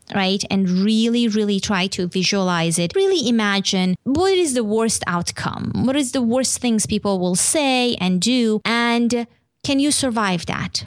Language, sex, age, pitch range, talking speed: English, female, 20-39, 190-255 Hz, 165 wpm